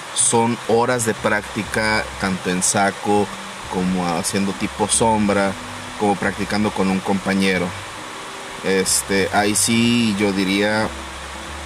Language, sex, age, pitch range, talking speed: Spanish, male, 30-49, 95-105 Hz, 110 wpm